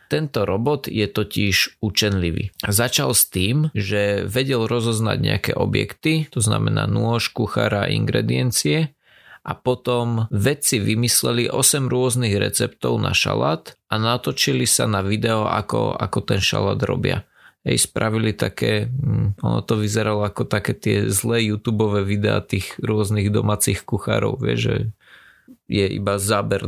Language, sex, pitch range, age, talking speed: Slovak, male, 105-130 Hz, 20-39, 130 wpm